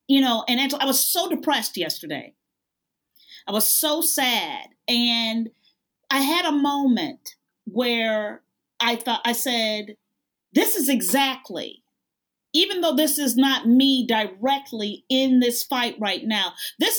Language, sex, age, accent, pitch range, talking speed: English, female, 40-59, American, 245-320 Hz, 135 wpm